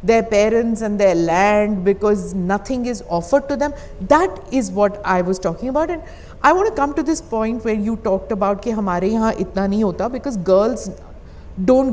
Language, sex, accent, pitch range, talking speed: English, female, Indian, 195-255 Hz, 175 wpm